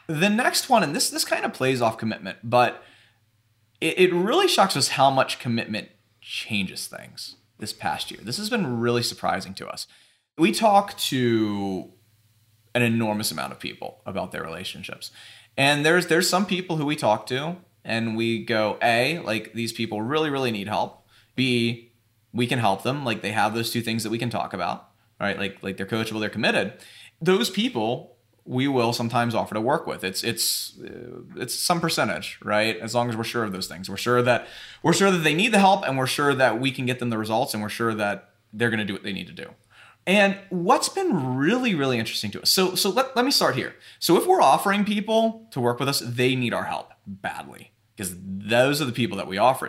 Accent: American